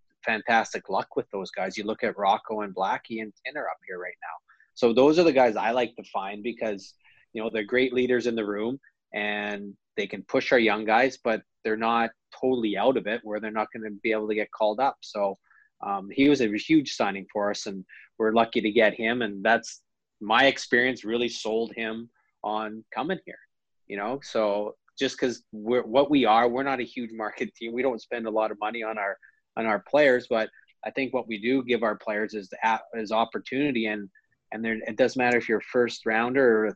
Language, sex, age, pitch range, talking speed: English, male, 30-49, 105-125 Hz, 225 wpm